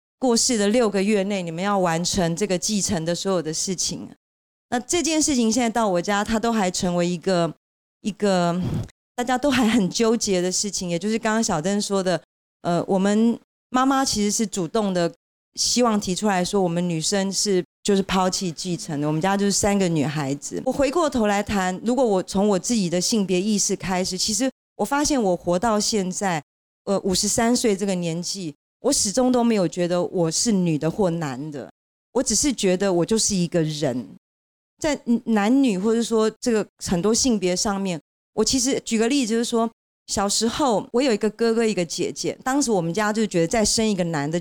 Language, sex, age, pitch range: Chinese, female, 30-49, 180-230 Hz